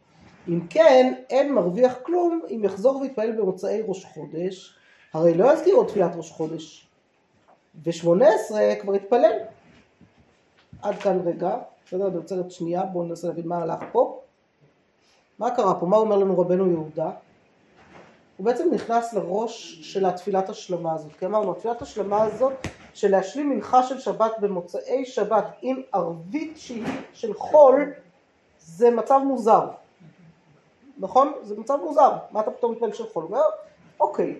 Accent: native